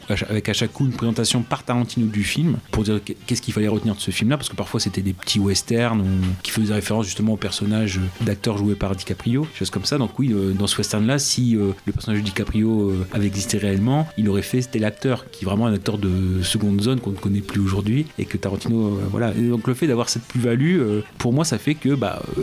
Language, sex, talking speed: French, male, 240 wpm